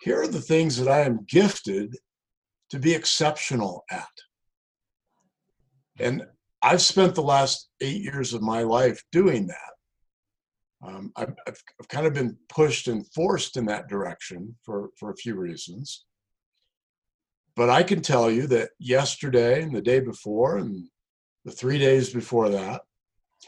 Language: English